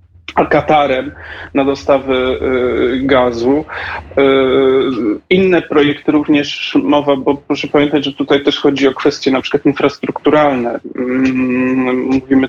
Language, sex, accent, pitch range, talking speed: Polish, male, native, 135-150 Hz, 100 wpm